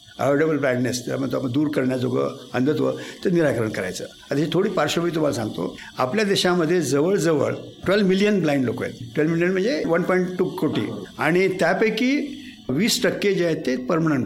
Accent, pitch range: native, 135-185 Hz